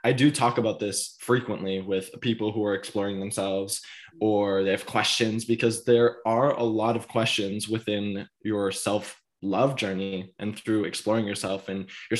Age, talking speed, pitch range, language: 20-39, 160 wpm, 105-130 Hz, English